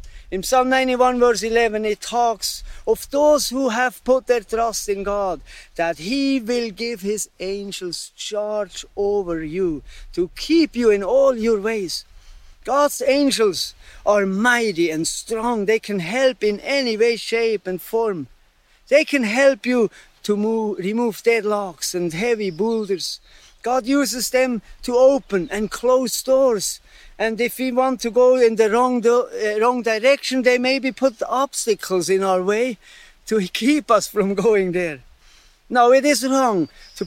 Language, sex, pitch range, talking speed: English, male, 195-255 Hz, 150 wpm